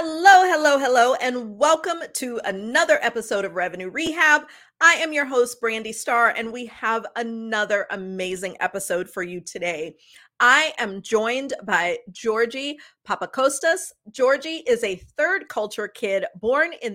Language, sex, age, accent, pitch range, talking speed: English, female, 40-59, American, 215-305 Hz, 140 wpm